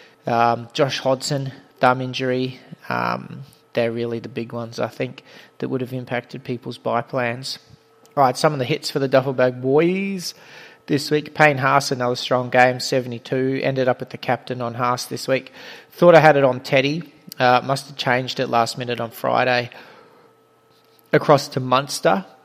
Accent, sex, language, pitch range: Australian, male, English, 120-140 Hz